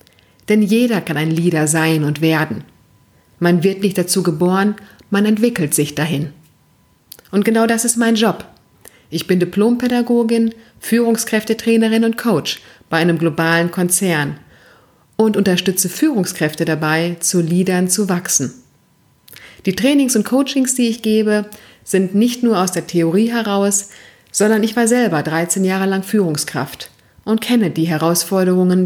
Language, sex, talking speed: German, female, 140 wpm